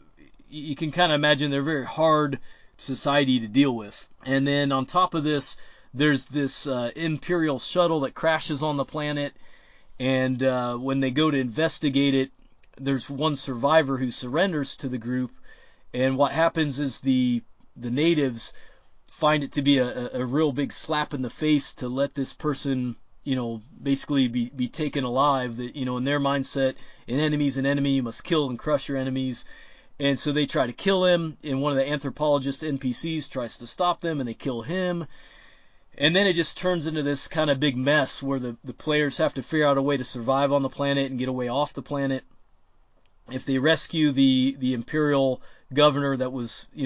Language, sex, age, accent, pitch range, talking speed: English, male, 30-49, American, 125-150 Hz, 200 wpm